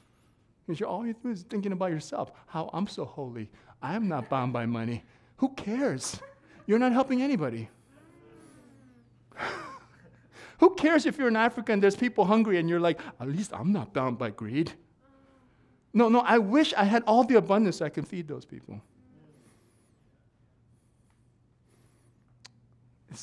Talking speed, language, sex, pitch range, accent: 155 wpm, English, male, 120-165 Hz, American